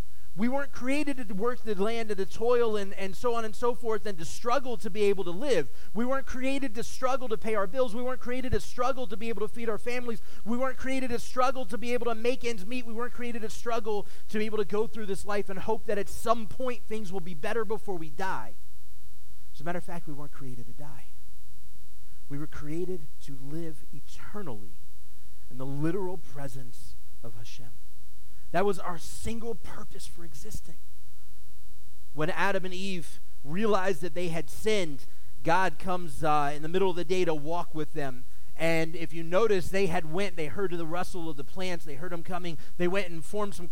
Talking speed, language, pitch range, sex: 215 wpm, English, 150-220 Hz, male